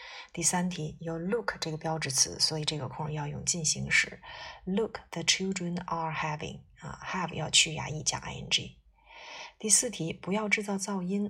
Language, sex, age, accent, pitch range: Chinese, female, 30-49, native, 155-180 Hz